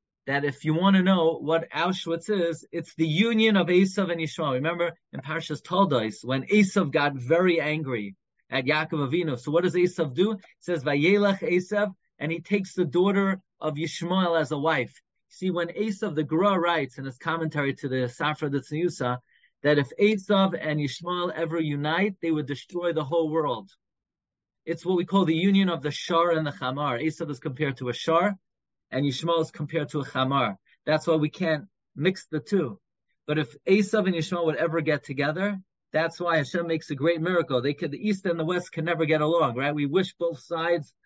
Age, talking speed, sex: 30-49, 200 wpm, male